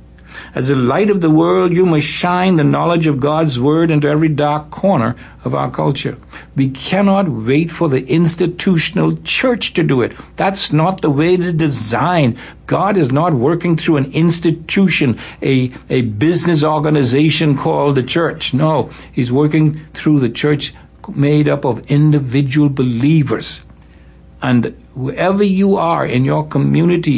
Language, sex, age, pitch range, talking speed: English, male, 60-79, 125-160 Hz, 155 wpm